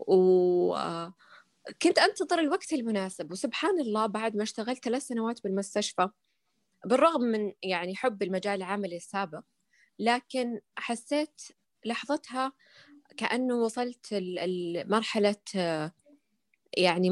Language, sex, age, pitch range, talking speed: Arabic, female, 20-39, 185-235 Hz, 95 wpm